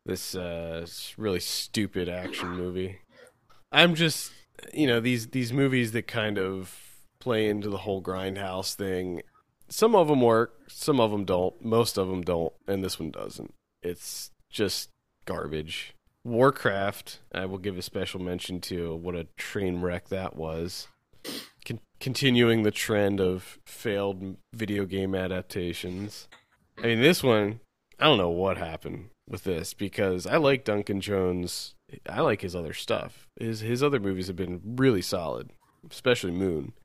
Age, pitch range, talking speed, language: 20-39, 90-110 Hz, 155 wpm, English